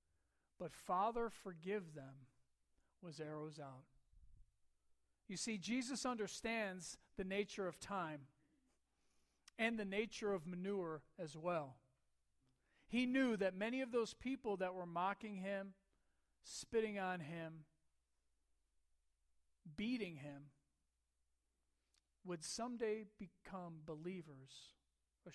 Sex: male